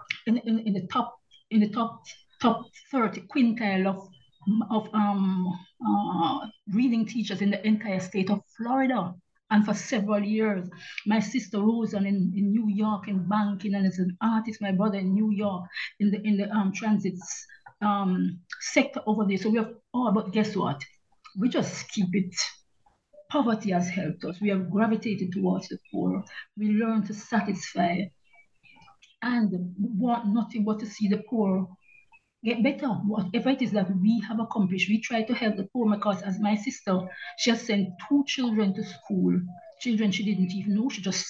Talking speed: 175 wpm